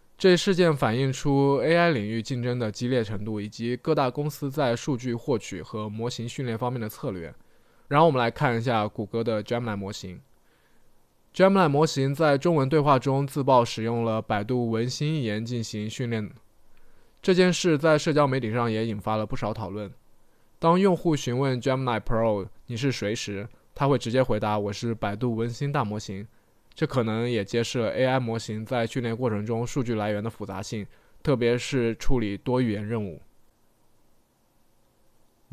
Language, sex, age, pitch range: Chinese, male, 20-39, 110-135 Hz